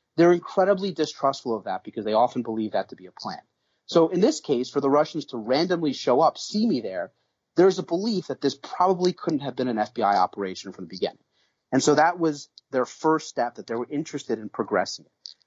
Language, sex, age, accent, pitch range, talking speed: English, male, 30-49, American, 120-165 Hz, 215 wpm